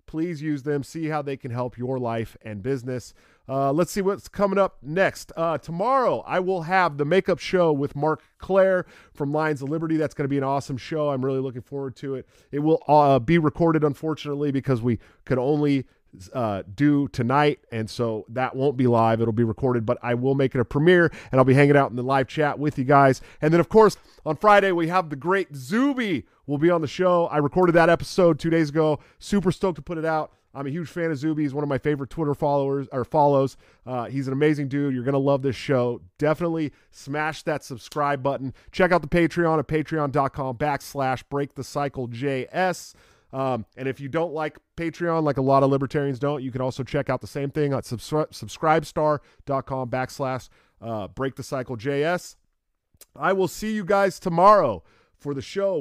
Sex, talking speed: male, 210 wpm